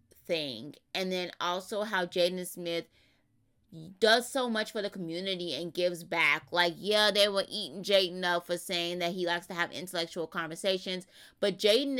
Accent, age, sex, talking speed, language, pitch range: American, 20-39, female, 170 wpm, English, 160-185 Hz